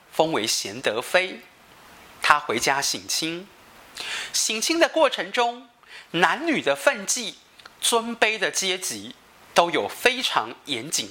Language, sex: Chinese, male